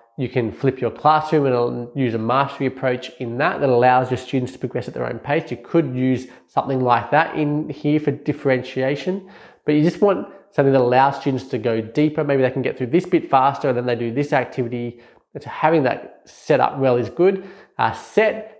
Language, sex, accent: English, male, Australian